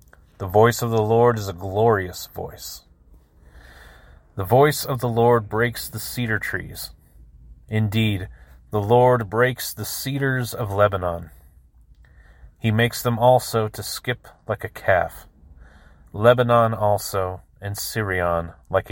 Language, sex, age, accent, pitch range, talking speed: English, male, 30-49, American, 80-120 Hz, 125 wpm